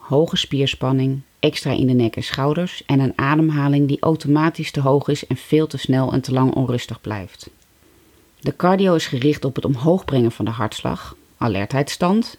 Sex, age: female, 30-49